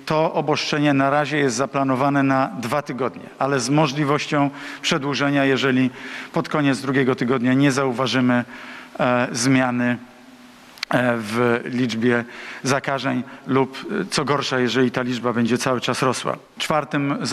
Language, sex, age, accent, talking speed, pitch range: Polish, male, 50-69, native, 120 wpm, 125-145 Hz